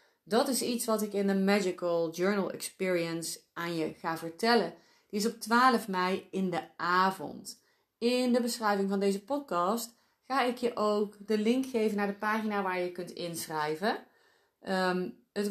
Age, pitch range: 30-49, 175-235 Hz